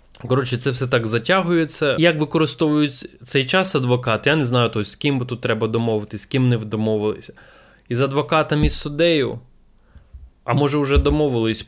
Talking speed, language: 165 wpm, Ukrainian